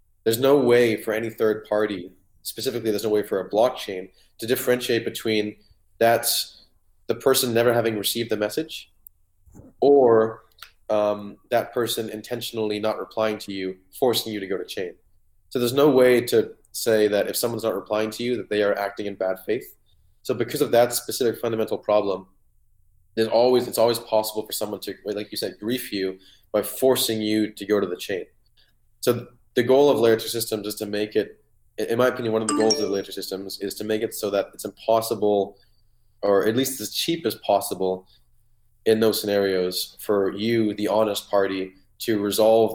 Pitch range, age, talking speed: 100-115 Hz, 20-39, 190 wpm